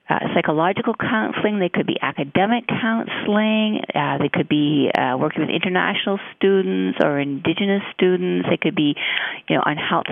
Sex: female